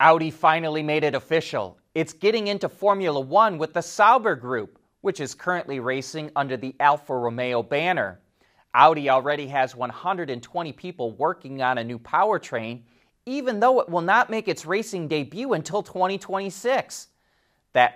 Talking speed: 150 wpm